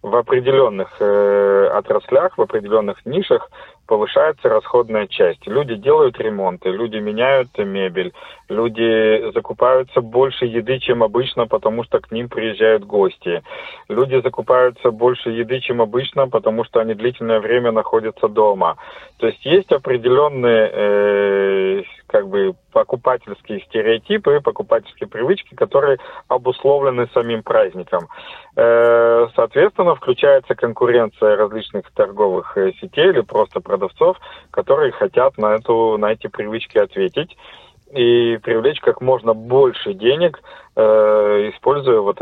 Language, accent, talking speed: Russian, native, 115 wpm